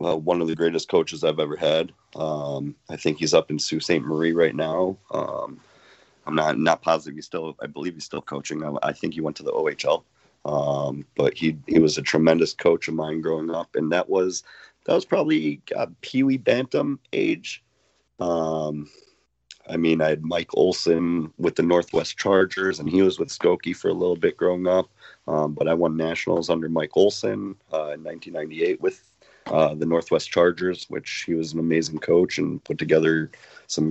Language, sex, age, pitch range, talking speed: English, male, 30-49, 80-95 Hz, 195 wpm